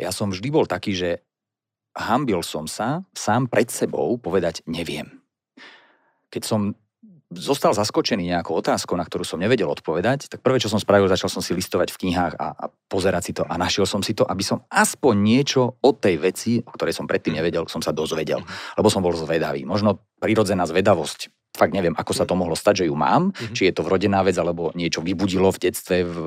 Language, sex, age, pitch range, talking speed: Slovak, male, 40-59, 85-110 Hz, 200 wpm